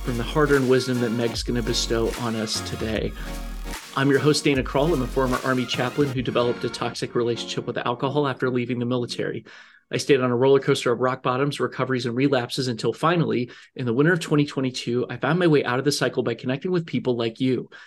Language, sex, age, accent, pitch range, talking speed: English, male, 30-49, American, 125-150 Hz, 220 wpm